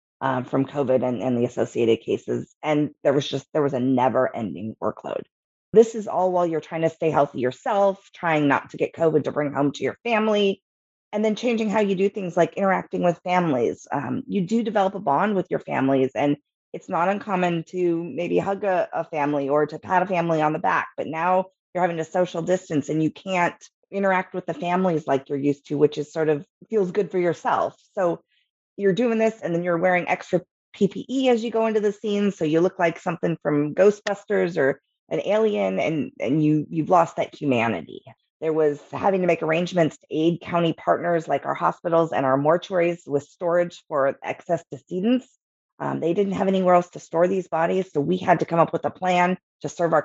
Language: English